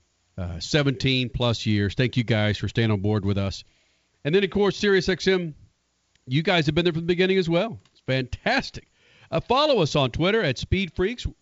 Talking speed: 200 wpm